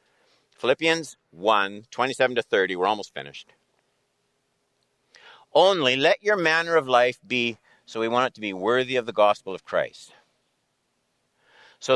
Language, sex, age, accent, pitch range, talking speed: English, male, 60-79, American, 125-160 Hz, 140 wpm